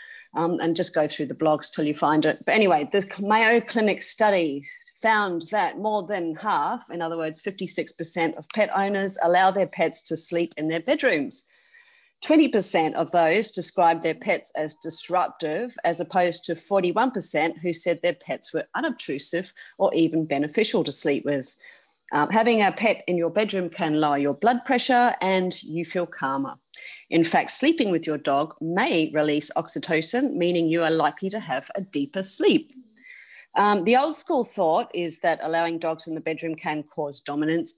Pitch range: 160-215 Hz